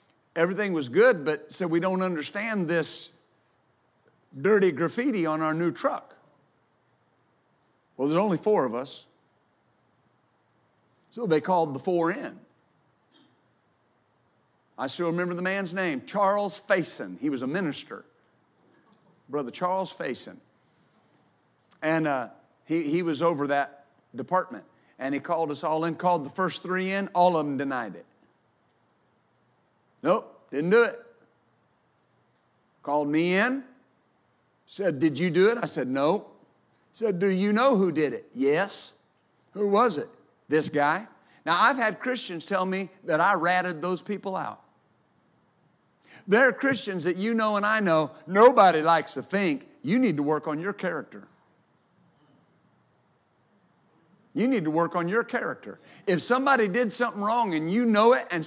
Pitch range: 165-220 Hz